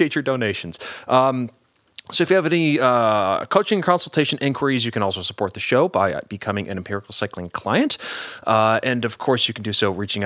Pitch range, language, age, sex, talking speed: 100-135 Hz, English, 30-49, male, 195 wpm